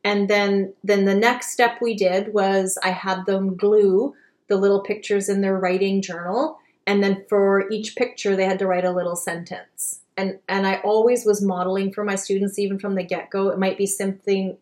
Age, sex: 30-49, female